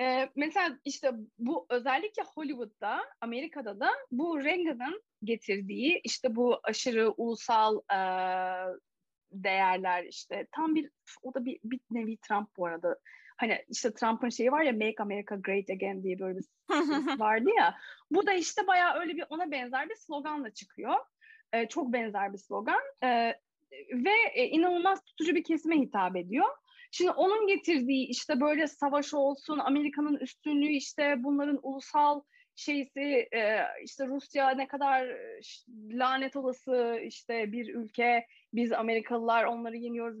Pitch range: 225-310 Hz